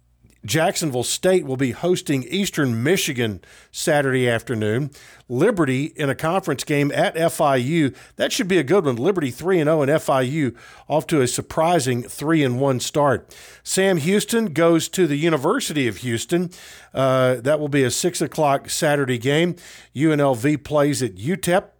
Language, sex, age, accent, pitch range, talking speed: English, male, 50-69, American, 130-160 Hz, 145 wpm